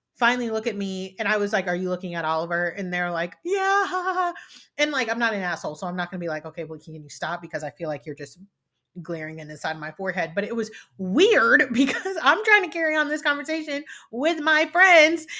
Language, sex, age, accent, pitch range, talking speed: English, female, 30-49, American, 190-260 Hz, 240 wpm